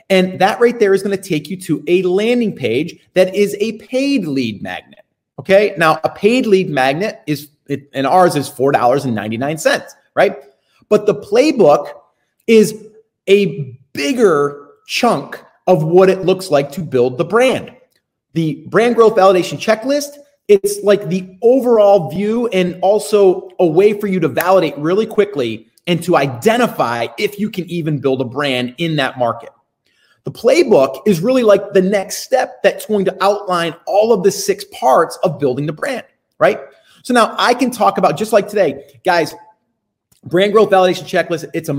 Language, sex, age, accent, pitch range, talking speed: English, male, 30-49, American, 150-205 Hz, 175 wpm